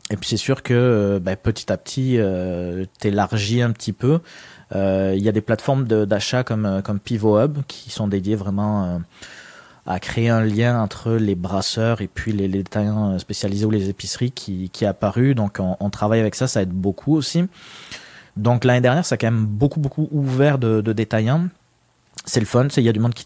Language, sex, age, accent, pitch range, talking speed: French, male, 30-49, French, 100-120 Hz, 210 wpm